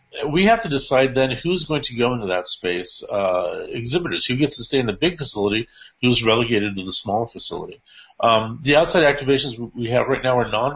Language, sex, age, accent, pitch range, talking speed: English, male, 50-69, American, 105-140 Hz, 210 wpm